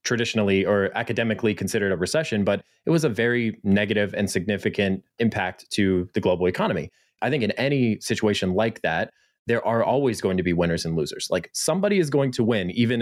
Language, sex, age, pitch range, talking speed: English, male, 20-39, 100-120 Hz, 195 wpm